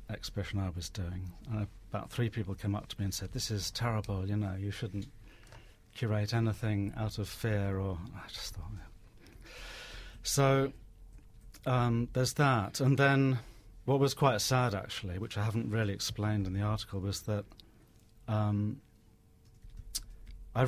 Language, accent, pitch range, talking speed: English, British, 100-115 Hz, 155 wpm